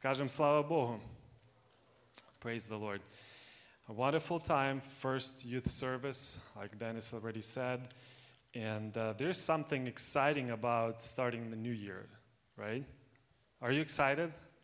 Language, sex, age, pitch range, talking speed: English, male, 30-49, 115-135 Hz, 110 wpm